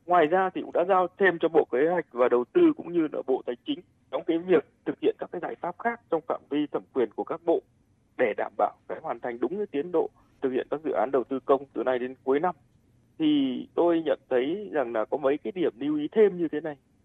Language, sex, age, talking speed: Vietnamese, male, 20-39, 270 wpm